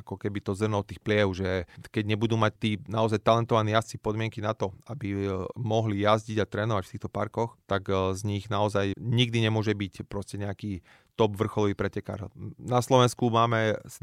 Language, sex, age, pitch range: Slovak, male, 30-49, 100-115 Hz